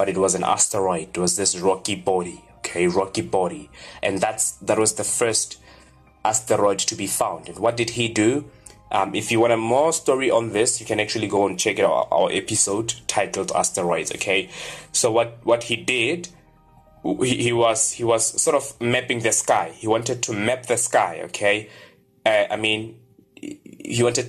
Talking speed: 185 wpm